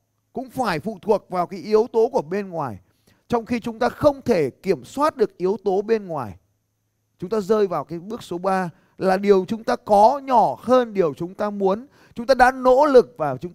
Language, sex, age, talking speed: Vietnamese, male, 20-39, 220 wpm